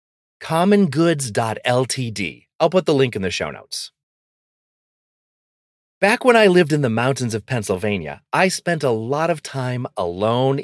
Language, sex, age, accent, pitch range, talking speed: English, male, 30-49, American, 110-165 Hz, 140 wpm